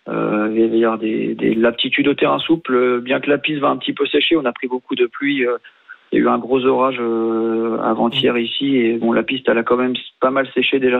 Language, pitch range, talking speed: French, 115-135 Hz, 245 wpm